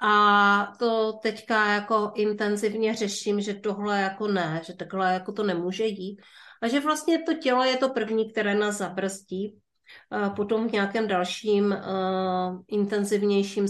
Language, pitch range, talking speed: Czech, 190-230 Hz, 145 wpm